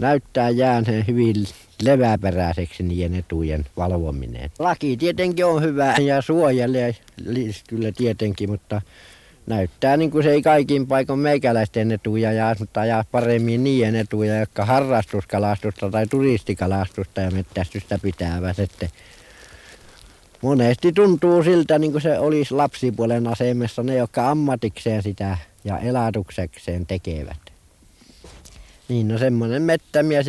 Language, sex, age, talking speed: Finnish, male, 60-79, 115 wpm